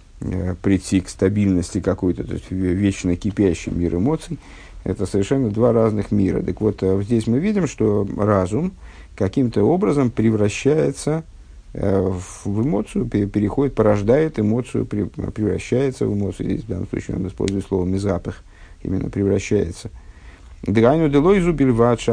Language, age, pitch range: Russian, 50-69, 95-115 Hz